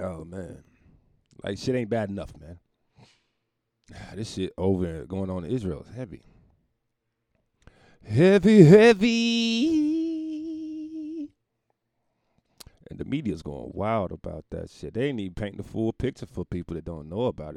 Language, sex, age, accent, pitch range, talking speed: English, male, 40-59, American, 95-130 Hz, 135 wpm